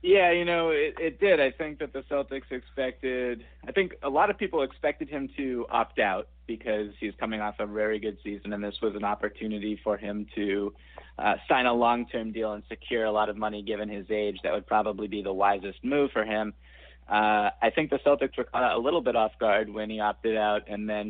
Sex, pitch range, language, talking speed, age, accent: male, 105-125 Hz, English, 230 wpm, 30-49, American